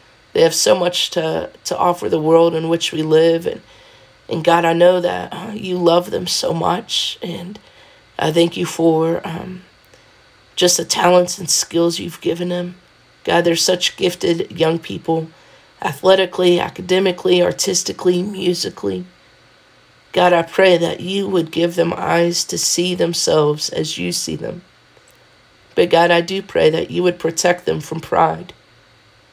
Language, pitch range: English, 165-180 Hz